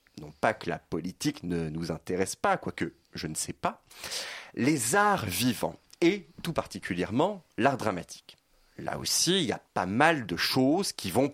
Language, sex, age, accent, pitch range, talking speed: French, male, 30-49, French, 90-135 Hz, 175 wpm